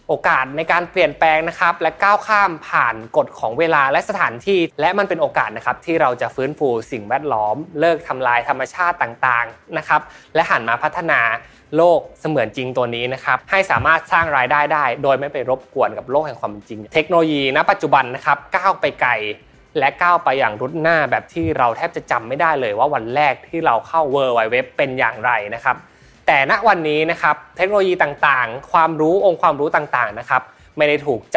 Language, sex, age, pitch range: Thai, male, 20-39, 130-170 Hz